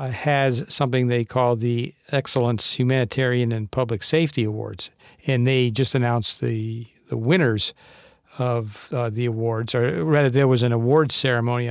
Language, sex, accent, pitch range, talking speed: English, male, American, 115-135 Hz, 150 wpm